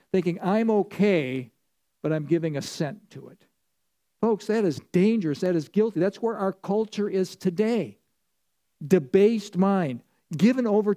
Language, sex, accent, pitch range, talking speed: English, male, American, 150-195 Hz, 140 wpm